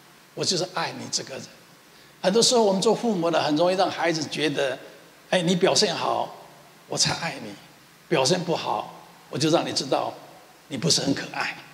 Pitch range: 160-190 Hz